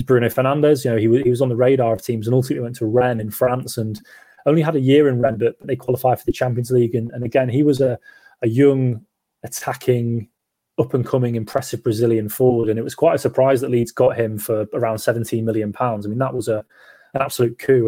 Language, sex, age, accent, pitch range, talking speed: English, male, 20-39, British, 115-130 Hz, 240 wpm